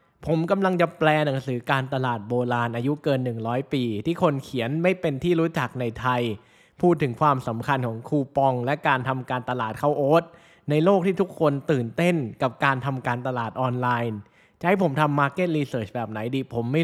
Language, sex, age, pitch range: Thai, male, 20-39, 130-170 Hz